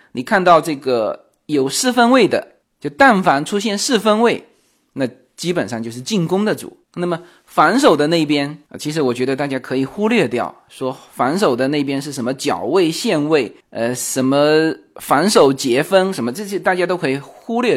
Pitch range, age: 140-210 Hz, 20-39